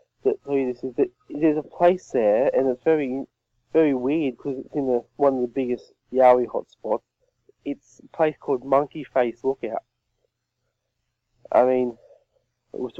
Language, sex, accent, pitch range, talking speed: English, male, Australian, 115-140 Hz, 155 wpm